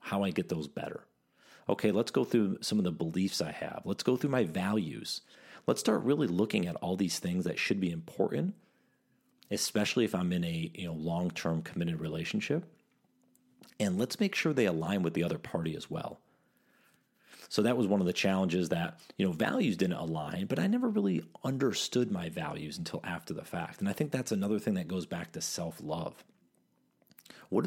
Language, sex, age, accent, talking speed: English, male, 40-59, American, 195 wpm